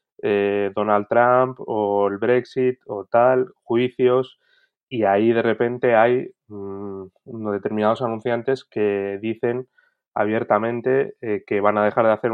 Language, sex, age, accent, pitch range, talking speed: Spanish, male, 20-39, Spanish, 105-130 Hz, 125 wpm